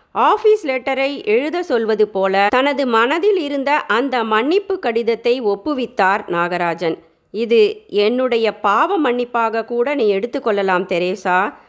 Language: Tamil